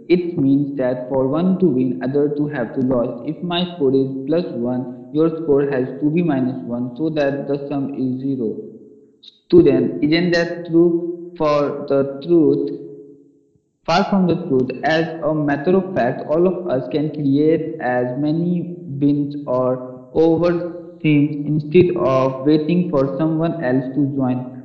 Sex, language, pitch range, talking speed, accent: male, English, 135-165 Hz, 160 wpm, Indian